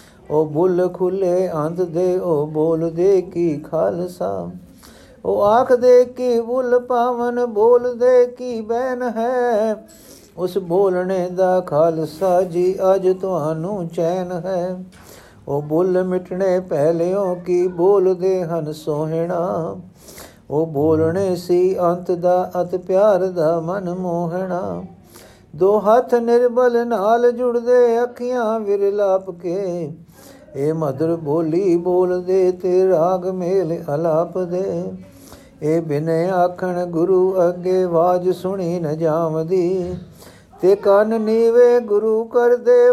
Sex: male